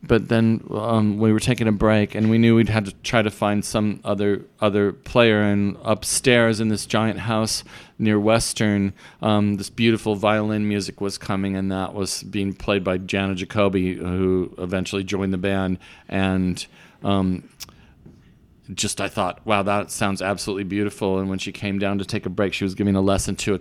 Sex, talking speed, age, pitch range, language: male, 190 wpm, 40-59, 95-110 Hz, English